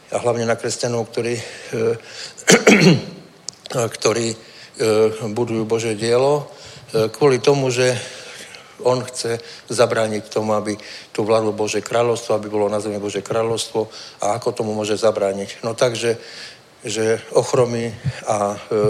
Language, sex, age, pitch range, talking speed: Czech, male, 60-79, 105-120 Hz, 120 wpm